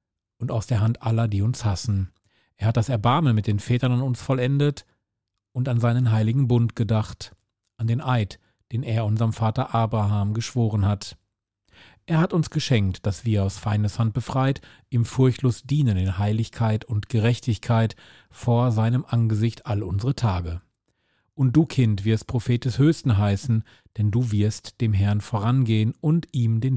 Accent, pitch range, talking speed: German, 105-125 Hz, 165 wpm